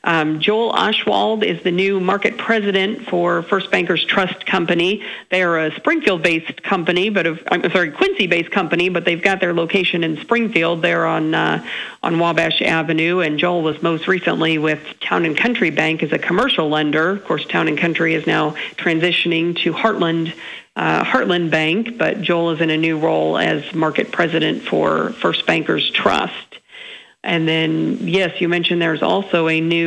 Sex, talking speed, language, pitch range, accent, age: female, 175 wpm, English, 160-190 Hz, American, 50-69